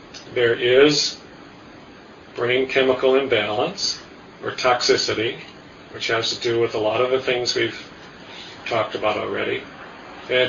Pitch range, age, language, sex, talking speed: 120-145 Hz, 40-59, English, male, 125 wpm